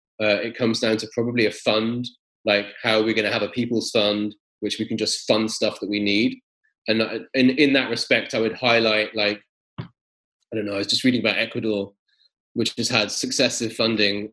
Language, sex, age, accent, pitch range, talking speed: English, male, 20-39, British, 105-135 Hz, 210 wpm